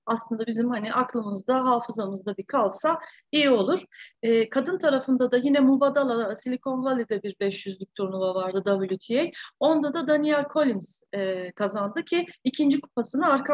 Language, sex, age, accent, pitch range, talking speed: Turkish, female, 30-49, native, 220-275 Hz, 145 wpm